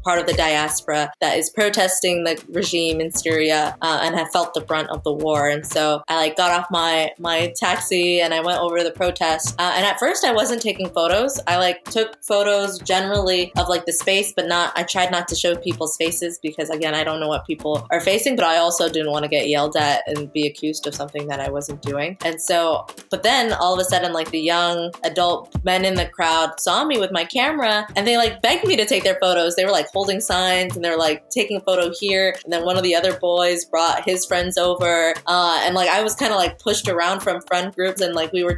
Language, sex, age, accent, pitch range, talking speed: English, female, 20-39, American, 165-190 Hz, 245 wpm